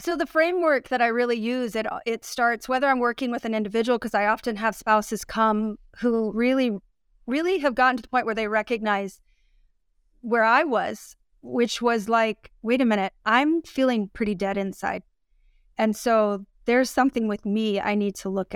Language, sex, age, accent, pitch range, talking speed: English, female, 30-49, American, 215-245 Hz, 185 wpm